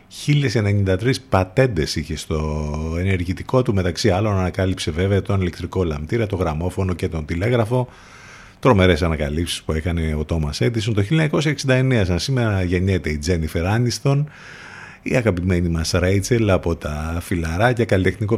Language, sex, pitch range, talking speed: Greek, male, 85-120 Hz, 130 wpm